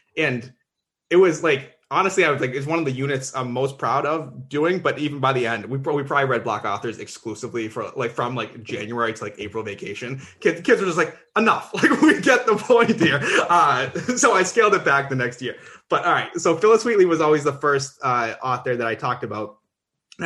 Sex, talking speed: male, 230 wpm